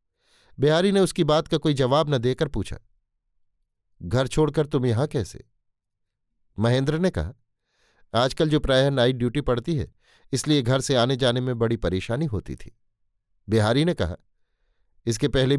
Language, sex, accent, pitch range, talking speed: Hindi, male, native, 105-140 Hz, 155 wpm